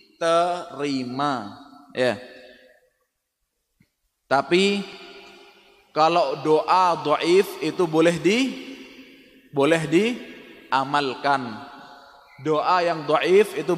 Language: Indonesian